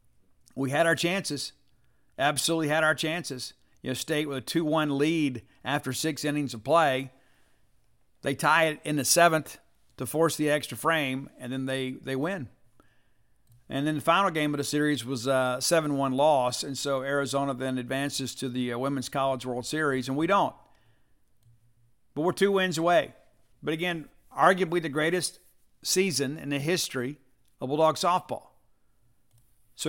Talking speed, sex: 160 wpm, male